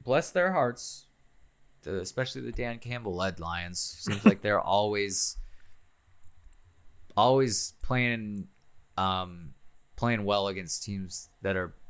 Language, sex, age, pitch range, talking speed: English, male, 20-39, 85-105 Hz, 110 wpm